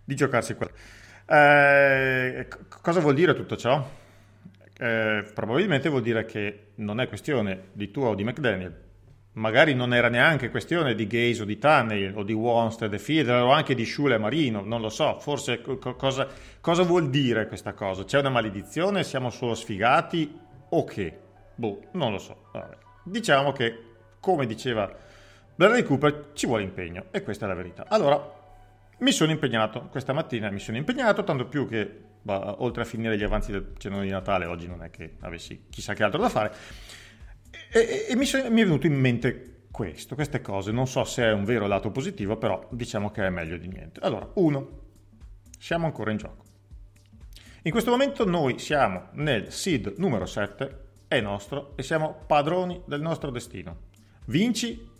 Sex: male